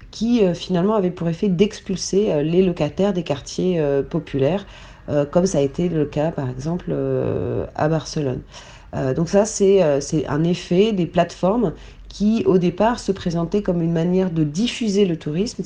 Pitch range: 145-190 Hz